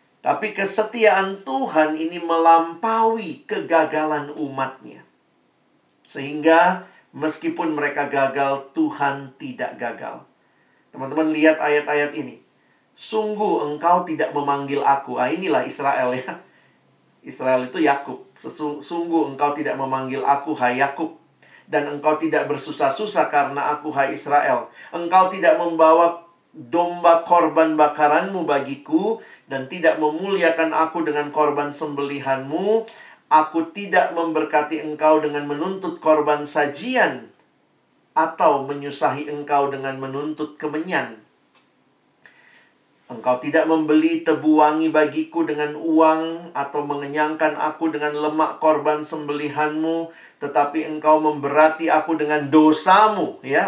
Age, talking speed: 50-69, 105 wpm